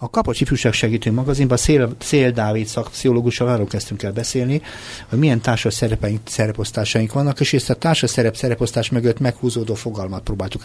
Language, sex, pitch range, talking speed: Hungarian, male, 100-125 Hz, 140 wpm